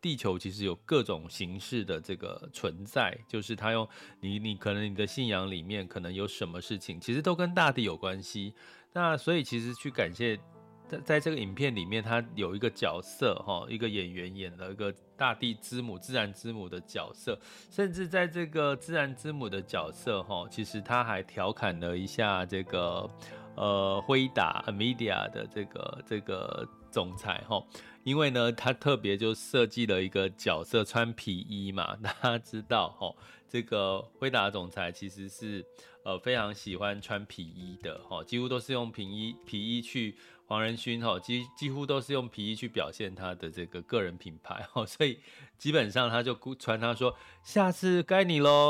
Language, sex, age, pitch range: Chinese, male, 30-49, 95-125 Hz